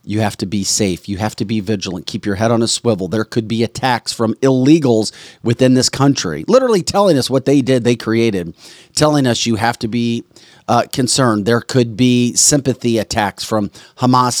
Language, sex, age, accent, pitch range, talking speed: English, male, 40-59, American, 95-125 Hz, 200 wpm